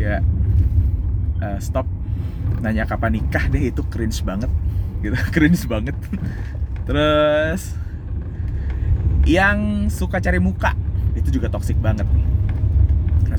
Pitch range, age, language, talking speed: 85-105 Hz, 20-39, Indonesian, 100 wpm